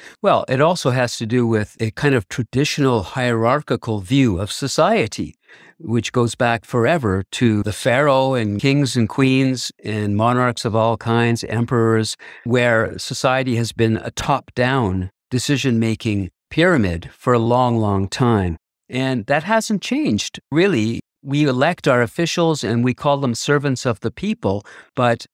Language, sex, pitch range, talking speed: English, male, 110-140 Hz, 150 wpm